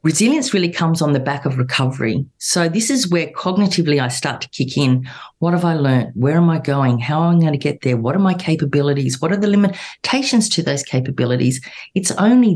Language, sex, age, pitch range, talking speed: English, female, 40-59, 135-175 Hz, 220 wpm